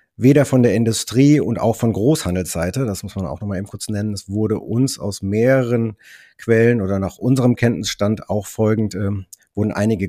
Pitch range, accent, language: 85-105 Hz, German, German